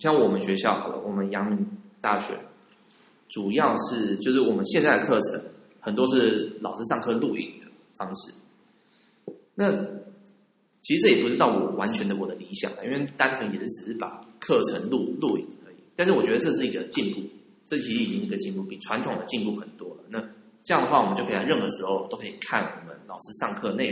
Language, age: Chinese, 20-39